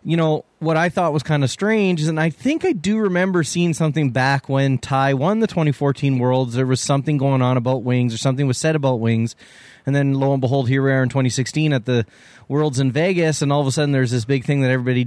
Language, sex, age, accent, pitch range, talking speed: English, male, 20-39, American, 125-150 Hz, 255 wpm